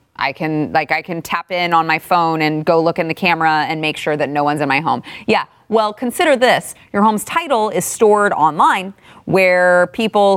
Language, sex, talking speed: English, female, 215 wpm